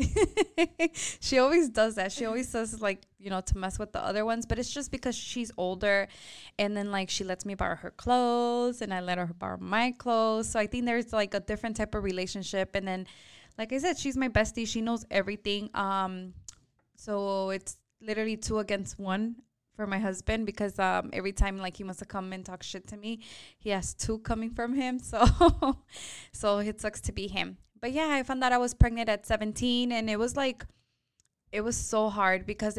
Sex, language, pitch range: female, English, 195-230 Hz